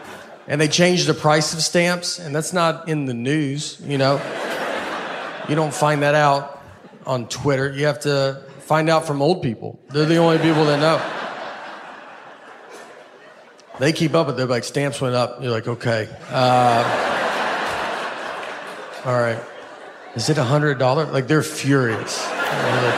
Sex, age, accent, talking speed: male, 40-59, American, 150 wpm